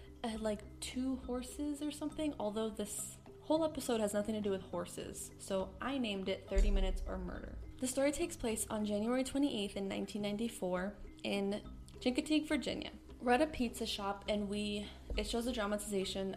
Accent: American